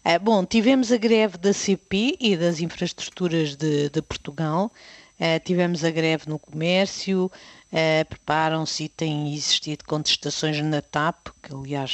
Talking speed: 145 wpm